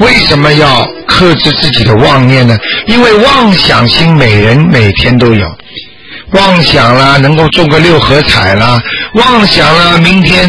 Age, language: 50-69, Chinese